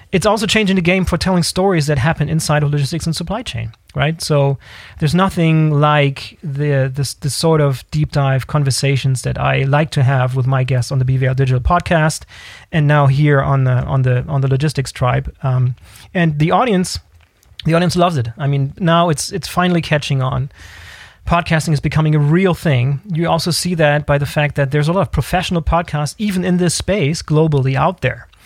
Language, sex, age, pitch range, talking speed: English, male, 30-49, 135-165 Hz, 200 wpm